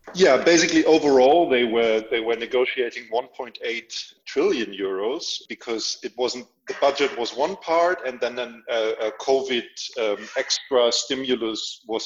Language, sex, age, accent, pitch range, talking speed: English, male, 40-59, German, 110-145 Hz, 160 wpm